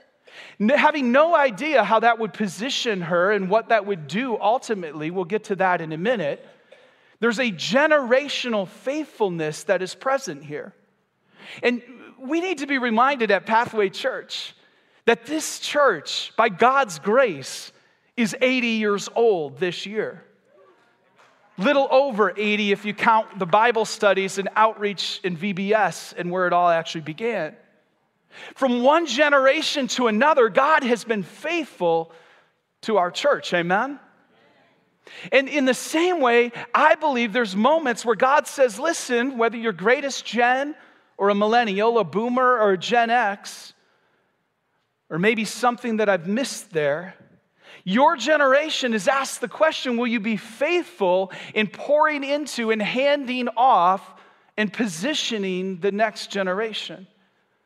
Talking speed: 140 wpm